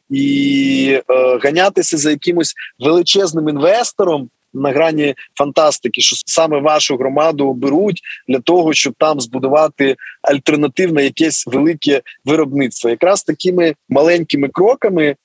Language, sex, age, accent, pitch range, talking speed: Ukrainian, male, 20-39, native, 135-170 Hz, 110 wpm